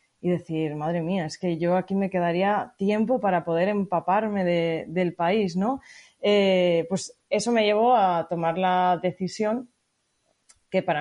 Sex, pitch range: female, 165-200 Hz